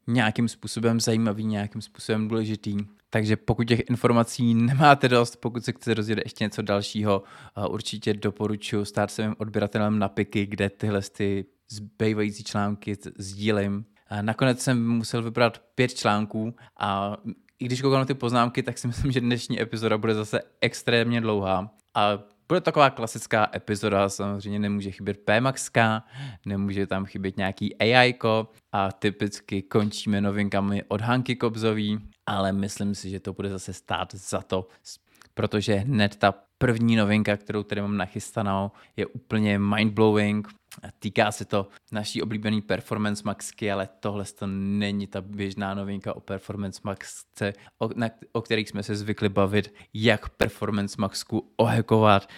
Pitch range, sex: 100-115 Hz, male